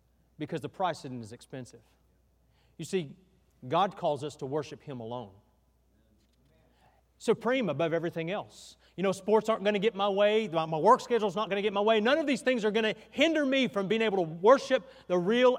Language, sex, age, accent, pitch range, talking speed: English, male, 40-59, American, 130-200 Hz, 205 wpm